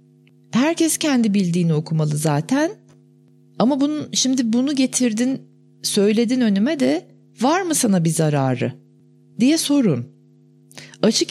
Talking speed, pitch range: 110 wpm, 160-235 Hz